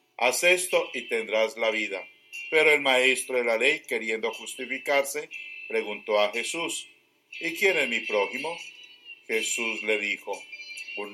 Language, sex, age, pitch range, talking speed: English, male, 50-69, 110-150 Hz, 140 wpm